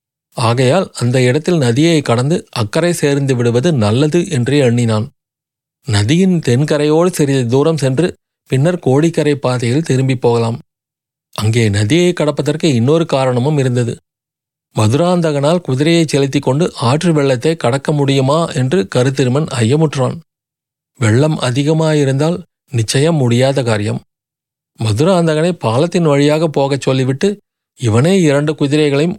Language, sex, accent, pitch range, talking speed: Tamil, male, native, 125-155 Hz, 105 wpm